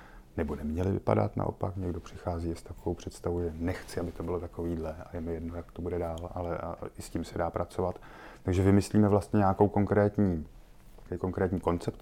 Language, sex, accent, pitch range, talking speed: Czech, male, native, 85-100 Hz, 180 wpm